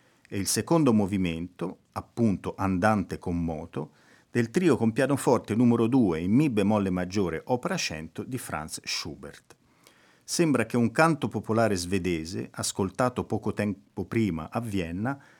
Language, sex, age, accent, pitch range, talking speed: Italian, male, 50-69, native, 95-125 Hz, 135 wpm